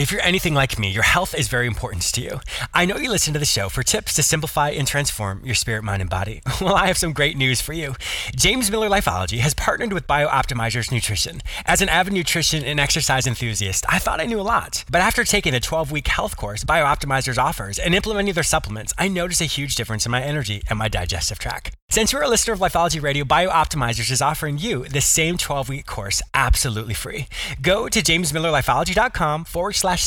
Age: 20-39